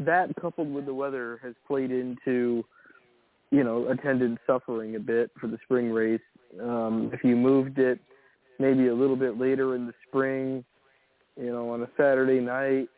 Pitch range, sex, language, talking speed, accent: 125-145 Hz, male, English, 170 wpm, American